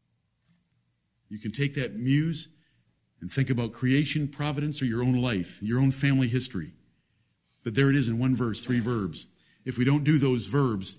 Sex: male